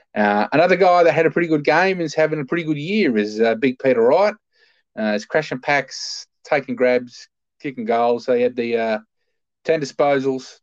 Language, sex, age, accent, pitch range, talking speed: English, male, 20-39, Australian, 115-155 Hz, 205 wpm